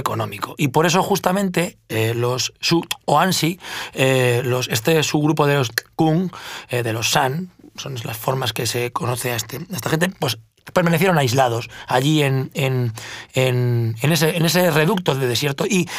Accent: Spanish